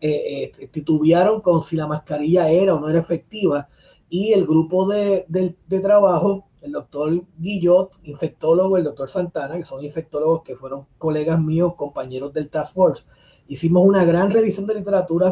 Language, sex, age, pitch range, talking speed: Spanish, male, 30-49, 155-195 Hz, 165 wpm